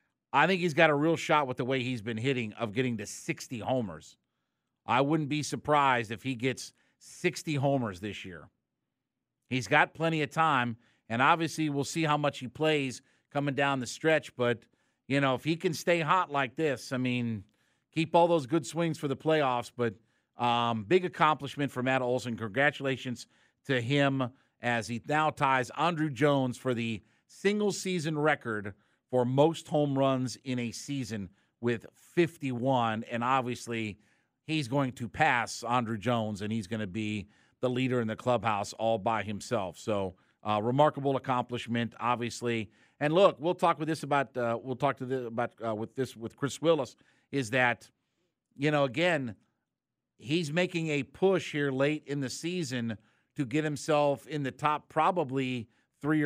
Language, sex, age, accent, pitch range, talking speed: English, male, 50-69, American, 120-150 Hz, 175 wpm